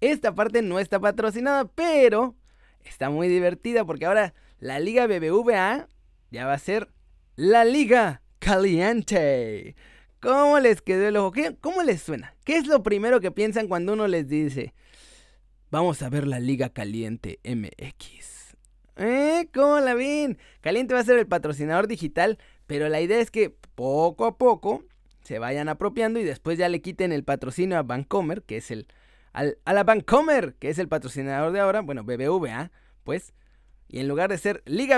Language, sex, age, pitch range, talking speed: Spanish, male, 30-49, 150-225 Hz, 170 wpm